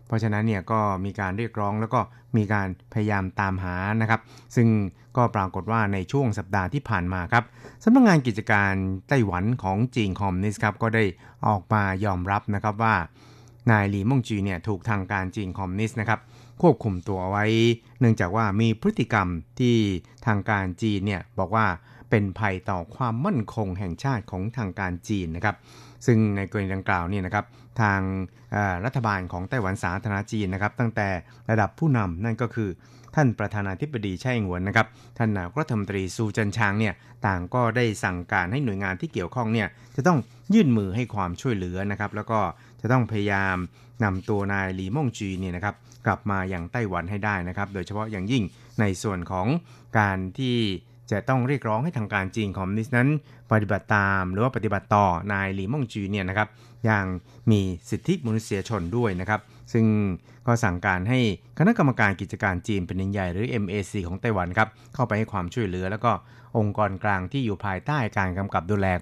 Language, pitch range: Thai, 95-120 Hz